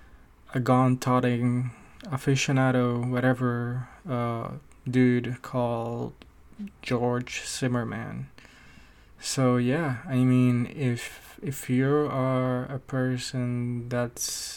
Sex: male